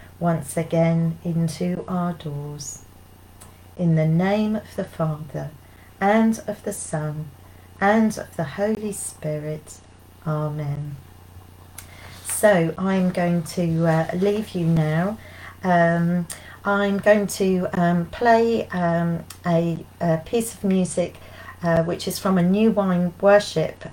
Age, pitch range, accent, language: 40-59, 150-180 Hz, British, English